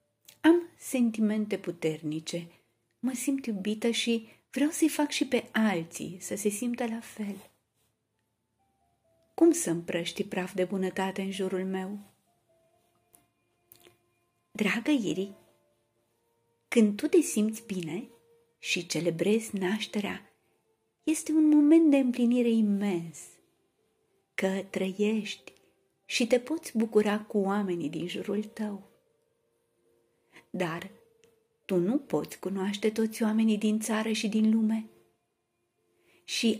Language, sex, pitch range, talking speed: Romanian, female, 185-250 Hz, 110 wpm